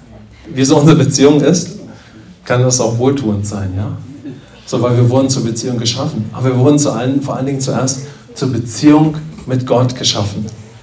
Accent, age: German, 40-59